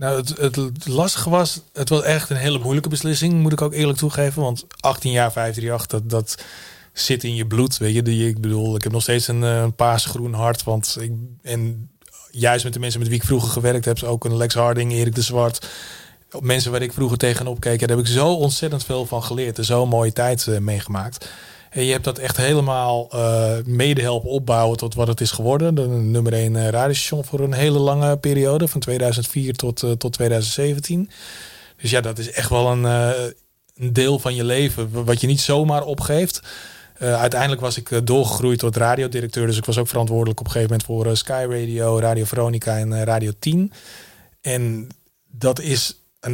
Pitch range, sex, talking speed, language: 115-135 Hz, male, 205 wpm, Dutch